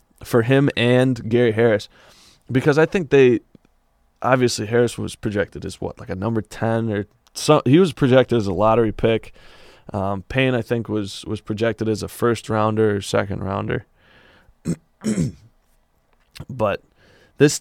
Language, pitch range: English, 100-120 Hz